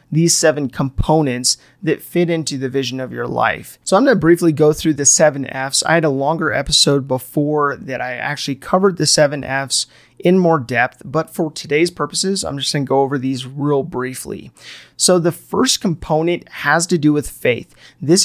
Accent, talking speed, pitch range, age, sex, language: American, 190 wpm, 135-170 Hz, 30-49, male, English